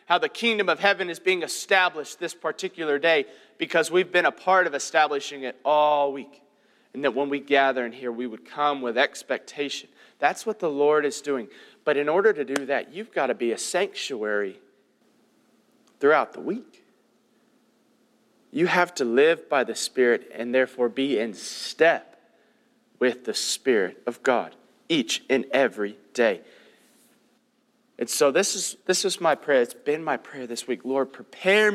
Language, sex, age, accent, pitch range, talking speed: English, male, 40-59, American, 140-195 Hz, 170 wpm